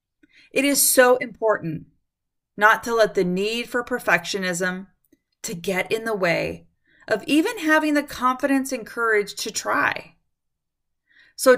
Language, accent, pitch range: English, American, 180-245 Hz